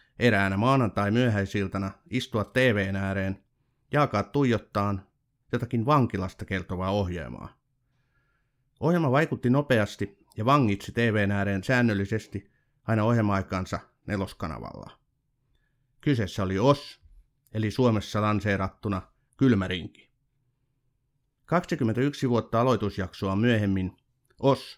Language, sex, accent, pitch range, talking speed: Finnish, male, native, 100-130 Hz, 85 wpm